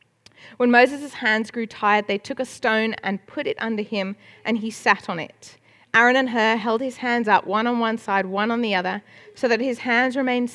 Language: English